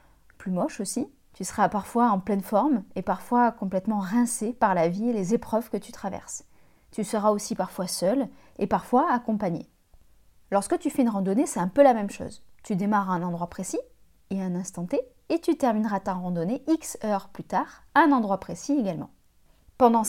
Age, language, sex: 30-49, French, female